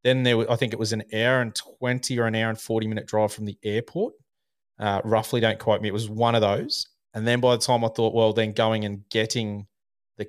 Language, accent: English, Australian